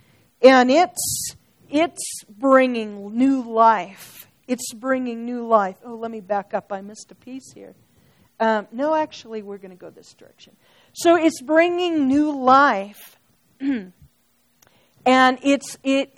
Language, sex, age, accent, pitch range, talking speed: English, female, 50-69, American, 220-275 Hz, 135 wpm